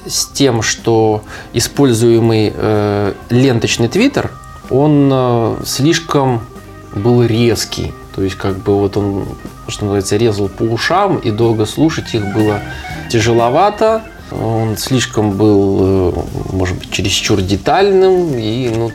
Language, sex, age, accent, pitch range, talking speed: Russian, male, 20-39, native, 100-130 Hz, 125 wpm